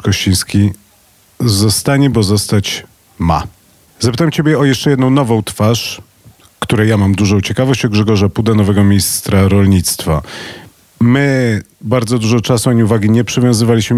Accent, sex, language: native, male, Polish